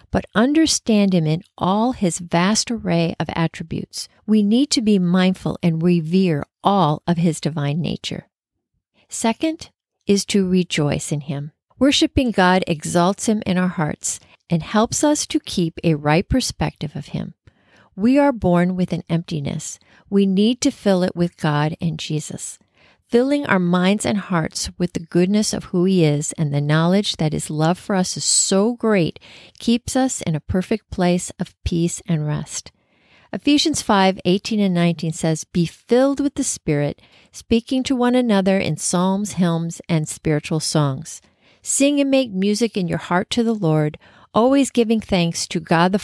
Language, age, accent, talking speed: English, 40-59, American, 170 wpm